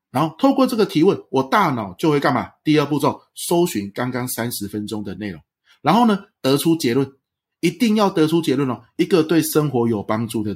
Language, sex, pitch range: Chinese, male, 110-145 Hz